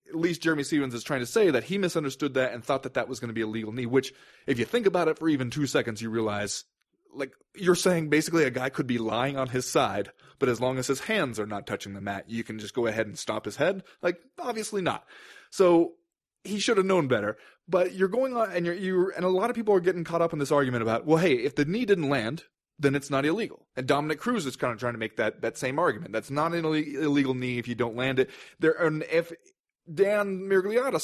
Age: 20-39